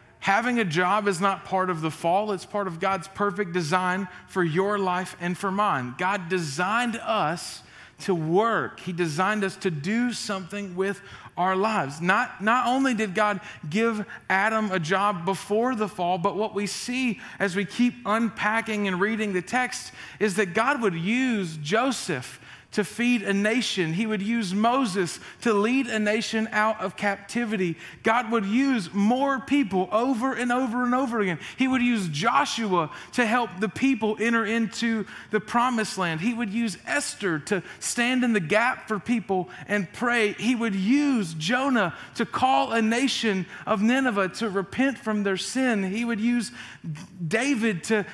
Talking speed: 170 wpm